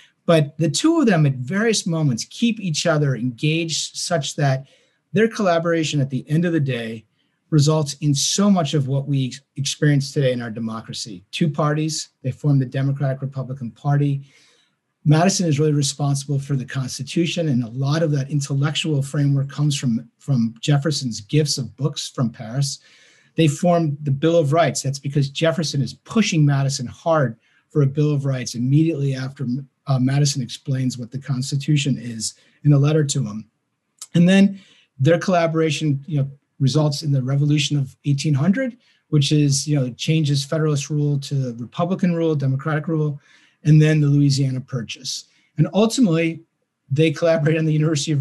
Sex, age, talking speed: male, 50-69, 165 wpm